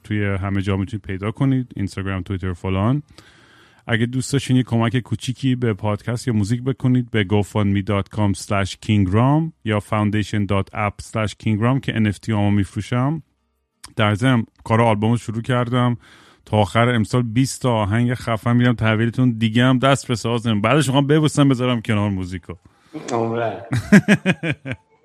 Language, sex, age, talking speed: Persian, male, 30-49, 145 wpm